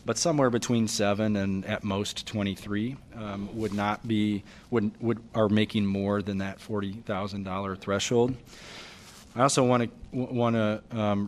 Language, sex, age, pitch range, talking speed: English, male, 40-59, 100-115 Hz, 160 wpm